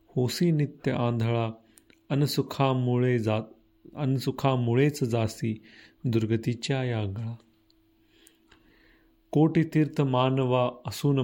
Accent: native